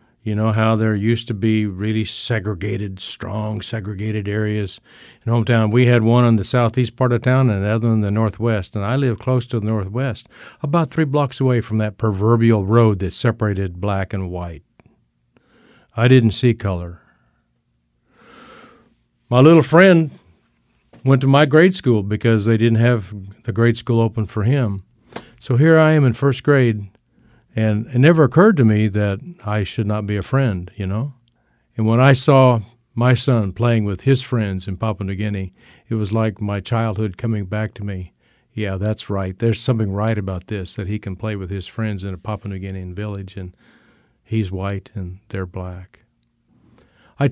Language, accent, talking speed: English, American, 180 wpm